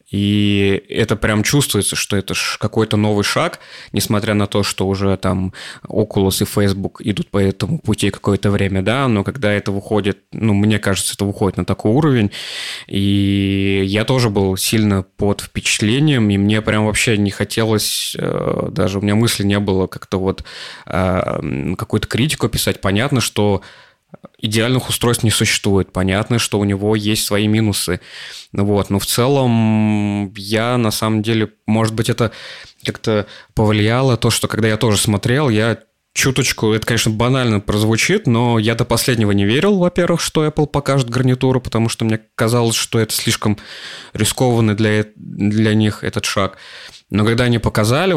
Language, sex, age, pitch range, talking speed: Russian, male, 20-39, 100-115 Hz, 160 wpm